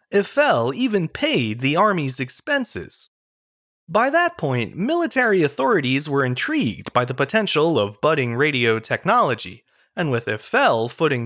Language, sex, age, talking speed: English, male, 30-49, 130 wpm